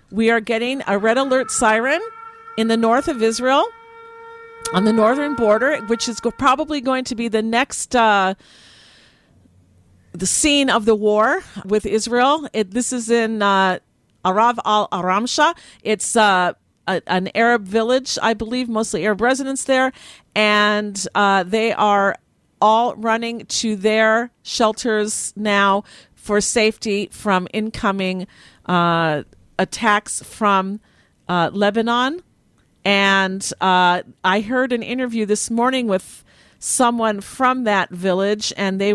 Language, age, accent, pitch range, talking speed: English, 50-69, American, 190-235 Hz, 135 wpm